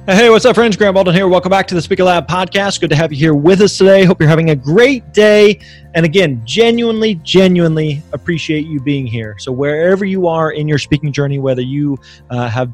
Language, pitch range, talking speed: English, 130-170 Hz, 220 wpm